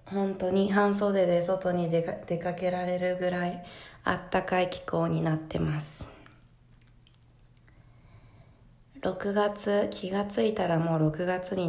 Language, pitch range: Japanese, 150-195 Hz